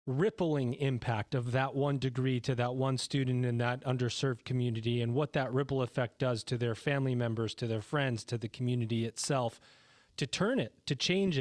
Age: 30-49